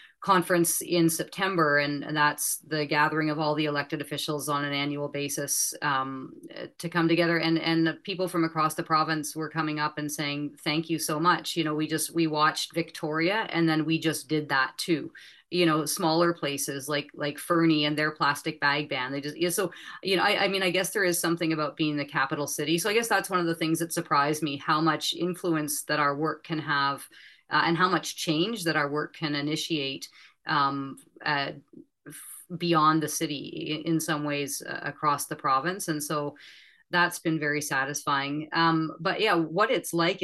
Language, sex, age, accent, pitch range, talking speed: English, female, 30-49, American, 150-170 Hz, 205 wpm